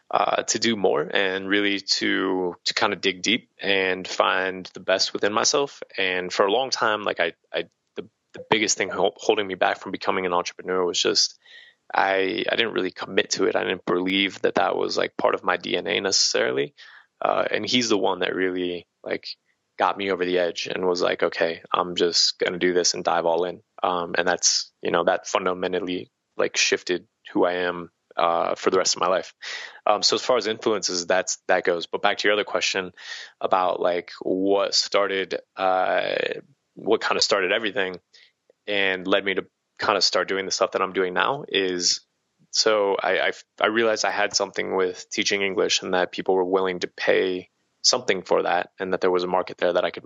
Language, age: English, 20-39